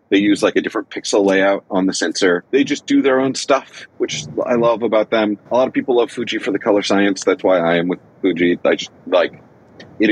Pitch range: 95-140 Hz